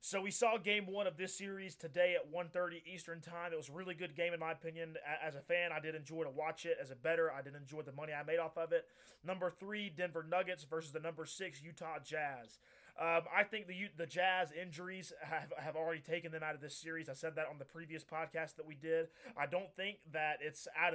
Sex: male